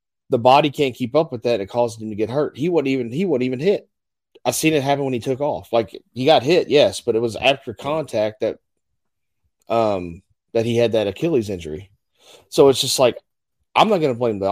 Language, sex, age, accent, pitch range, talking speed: English, male, 30-49, American, 105-130 Hz, 230 wpm